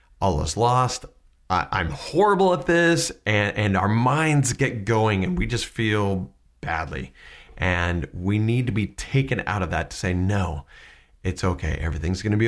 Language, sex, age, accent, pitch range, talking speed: English, male, 40-59, American, 70-110 Hz, 175 wpm